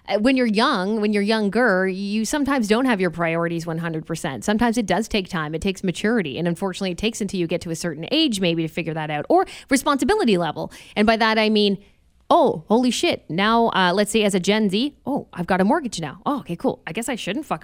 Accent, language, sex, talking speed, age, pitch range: American, English, female, 240 wpm, 20-39, 180-250 Hz